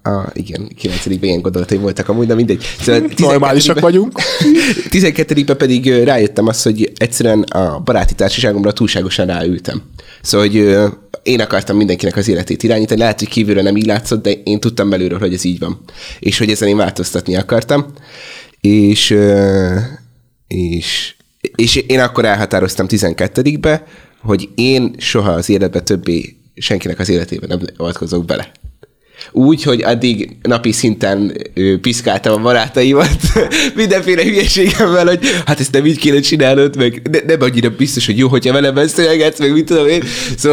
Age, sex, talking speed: 30-49, male, 150 wpm